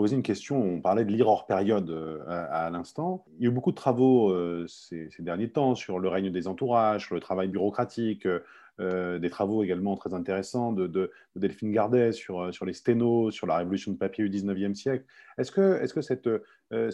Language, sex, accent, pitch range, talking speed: French, male, French, 95-125 Hz, 215 wpm